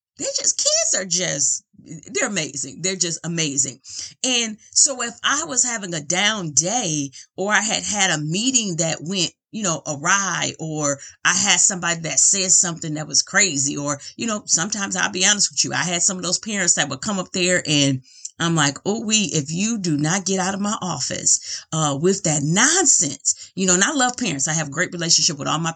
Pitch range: 155-210 Hz